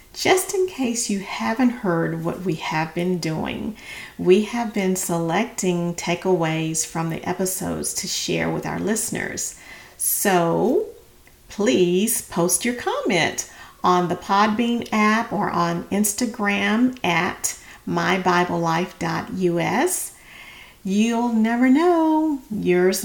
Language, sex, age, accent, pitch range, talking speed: English, female, 40-59, American, 180-240 Hz, 110 wpm